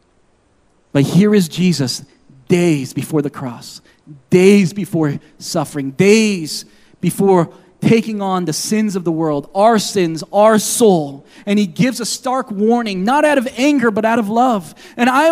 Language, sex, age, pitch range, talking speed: English, male, 30-49, 205-285 Hz, 155 wpm